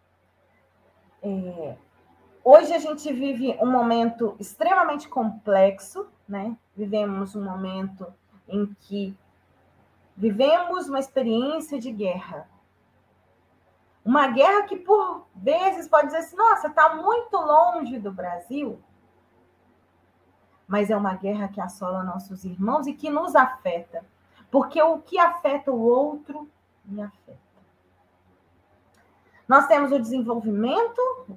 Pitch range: 185-300 Hz